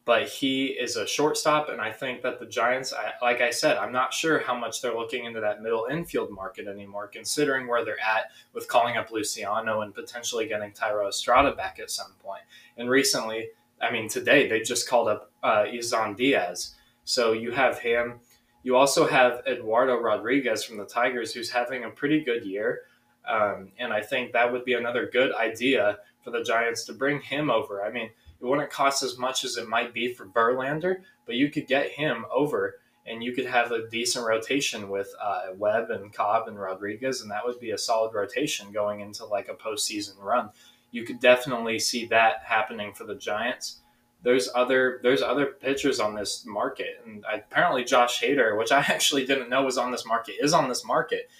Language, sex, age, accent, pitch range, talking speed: English, male, 20-39, American, 115-135 Hz, 200 wpm